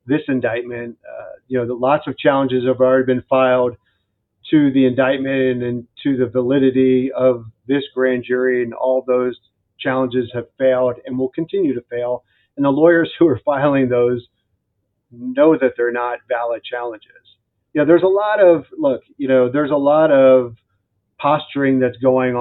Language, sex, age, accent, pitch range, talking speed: English, male, 40-59, American, 120-140 Hz, 170 wpm